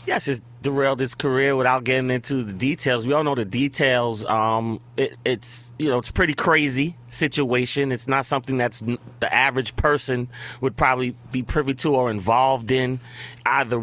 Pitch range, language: 130-150 Hz, English